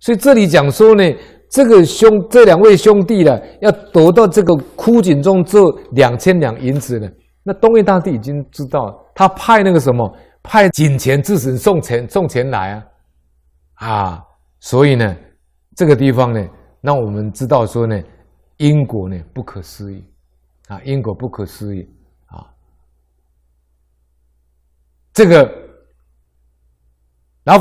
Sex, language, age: male, Chinese, 50-69